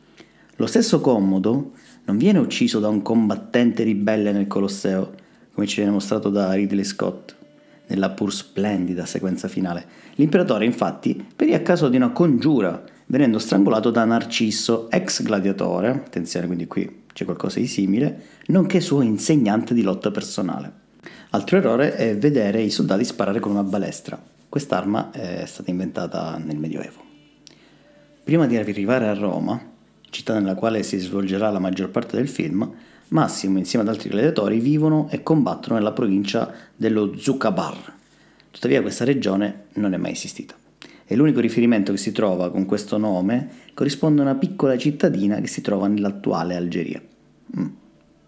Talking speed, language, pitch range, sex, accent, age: 150 wpm, Italian, 95-115 Hz, male, native, 30-49